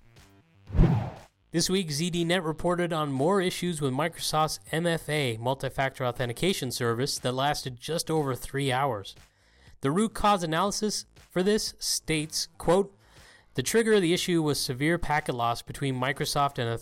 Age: 30-49